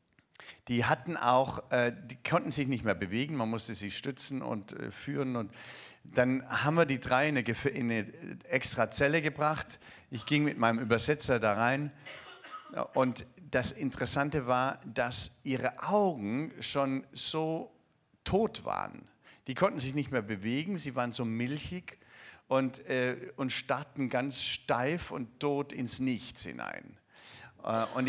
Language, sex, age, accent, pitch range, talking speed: German, male, 50-69, German, 125-150 Hz, 135 wpm